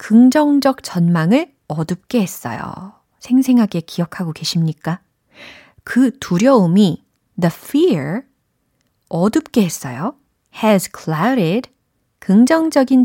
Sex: female